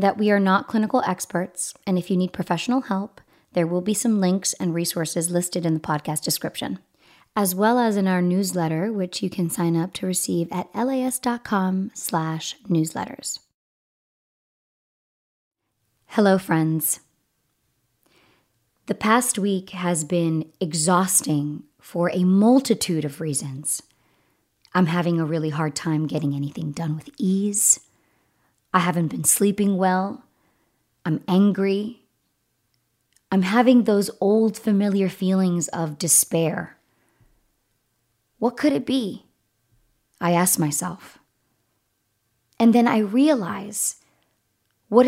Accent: American